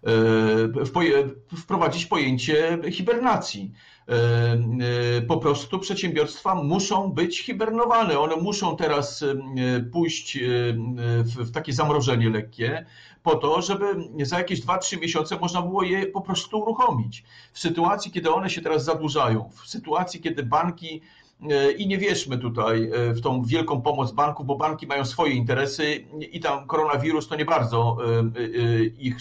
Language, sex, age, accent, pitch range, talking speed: Polish, male, 50-69, native, 120-165 Hz, 125 wpm